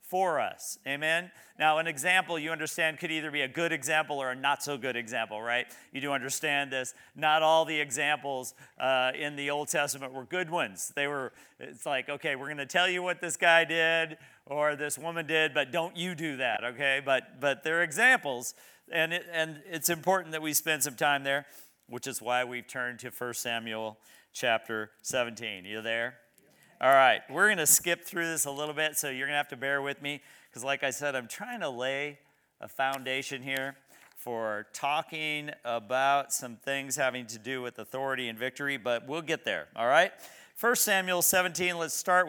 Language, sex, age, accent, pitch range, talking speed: English, male, 40-59, American, 125-160 Hz, 200 wpm